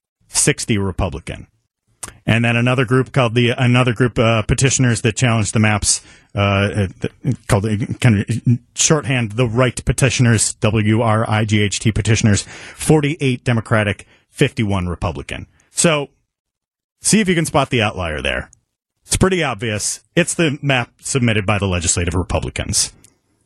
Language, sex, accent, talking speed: English, male, American, 130 wpm